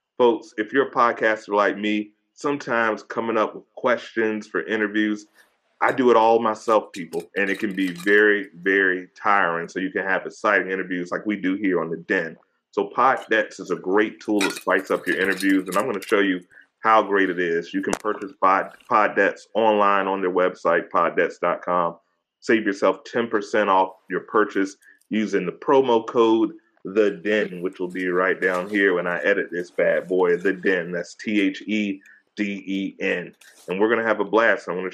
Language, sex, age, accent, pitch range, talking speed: English, male, 30-49, American, 95-110 Hz, 185 wpm